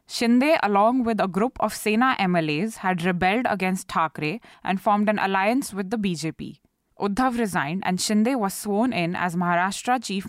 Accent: Indian